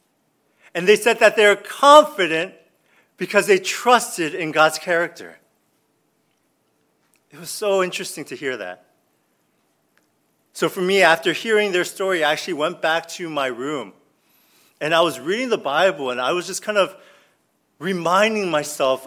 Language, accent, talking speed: English, American, 150 wpm